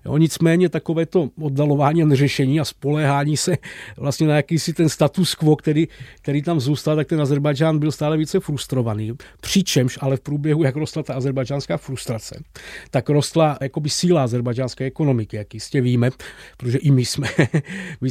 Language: Czech